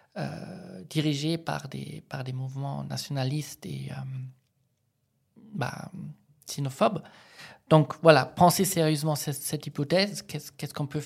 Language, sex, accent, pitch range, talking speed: French, male, French, 135-160 Hz, 125 wpm